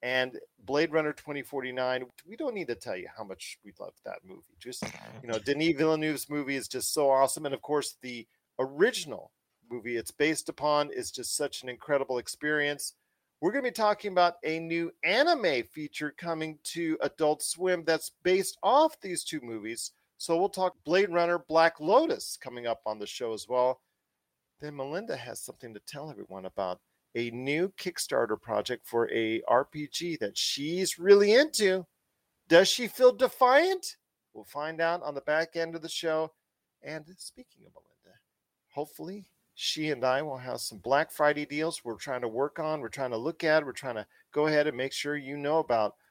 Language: English